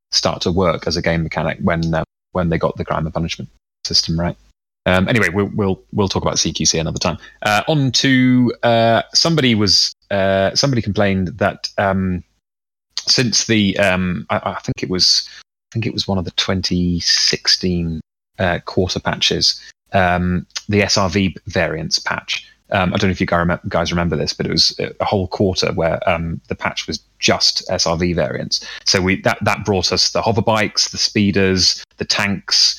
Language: English